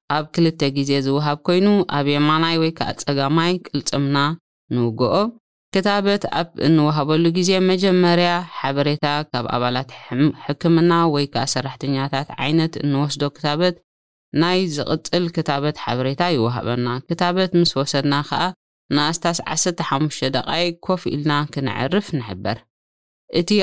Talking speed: 120 wpm